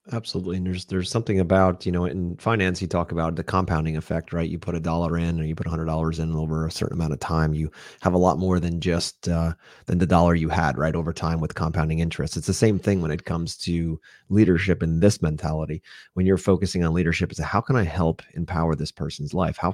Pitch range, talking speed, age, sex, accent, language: 80-95 Hz, 240 wpm, 30-49, male, American, English